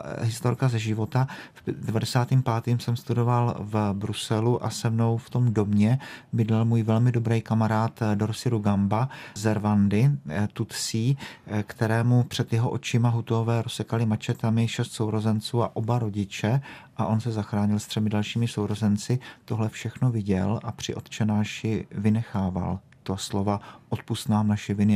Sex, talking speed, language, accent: male, 135 wpm, Czech, native